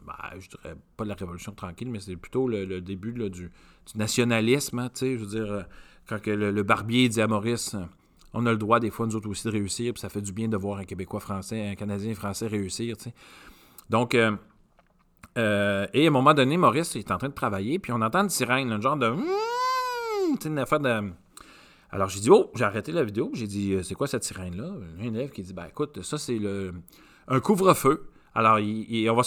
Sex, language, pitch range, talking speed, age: male, French, 100-130 Hz, 235 wpm, 40-59